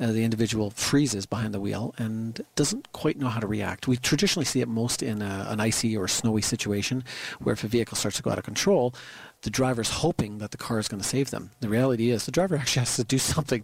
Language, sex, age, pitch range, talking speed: English, male, 40-59, 105-130 Hz, 245 wpm